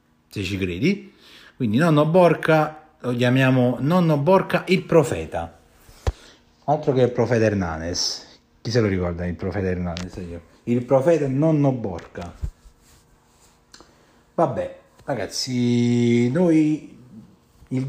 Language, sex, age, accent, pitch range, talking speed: Italian, male, 30-49, native, 105-140 Hz, 105 wpm